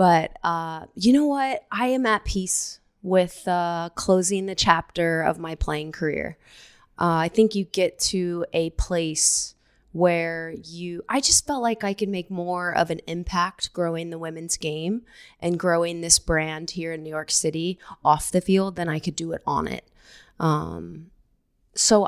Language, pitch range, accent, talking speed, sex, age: English, 160-185 Hz, American, 175 wpm, female, 20-39